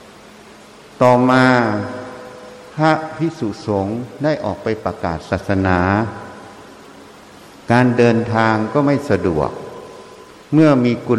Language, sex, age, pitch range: Thai, male, 60-79, 100-135 Hz